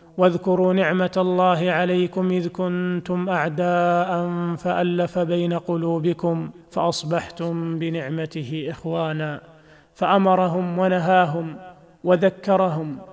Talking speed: 75 wpm